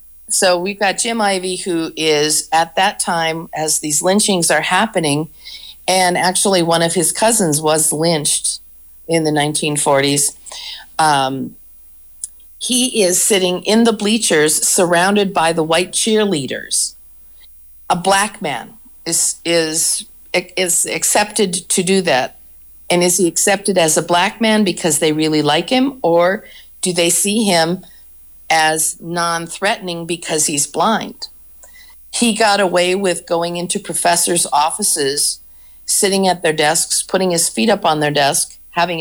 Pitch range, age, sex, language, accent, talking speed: 150-195 Hz, 50-69, female, English, American, 140 wpm